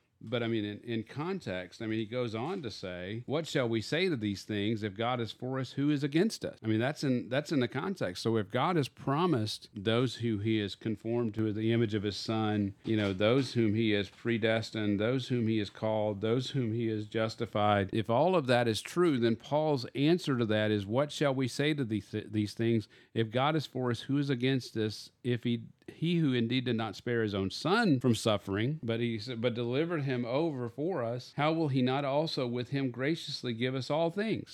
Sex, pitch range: male, 110-145 Hz